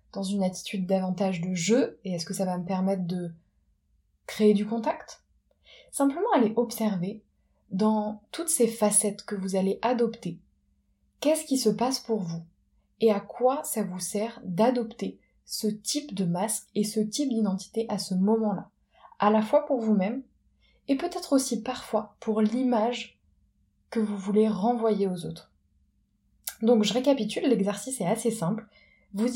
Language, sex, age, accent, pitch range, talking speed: French, female, 20-39, French, 185-235 Hz, 155 wpm